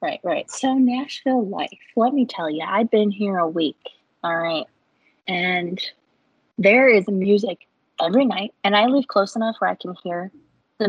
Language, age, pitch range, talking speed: English, 20-39, 180-240 Hz, 175 wpm